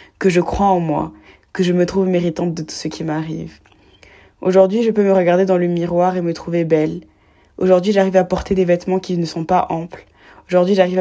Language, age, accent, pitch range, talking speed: French, 20-39, French, 160-185 Hz, 220 wpm